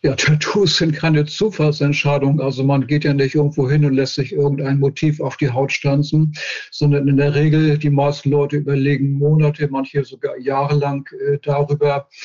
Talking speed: 165 wpm